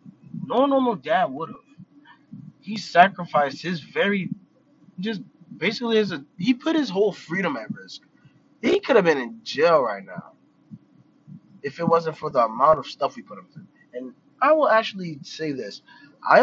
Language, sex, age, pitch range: English, male, 20-39, 135-225 Hz